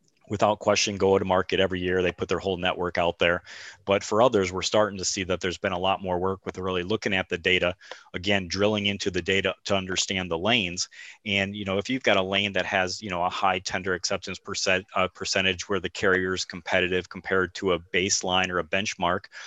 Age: 30-49